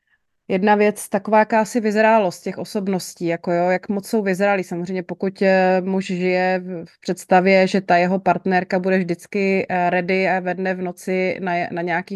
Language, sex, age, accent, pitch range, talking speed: Czech, female, 30-49, native, 180-205 Hz, 160 wpm